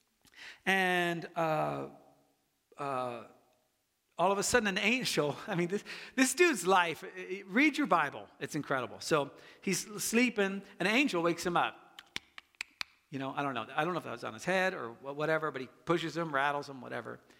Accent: American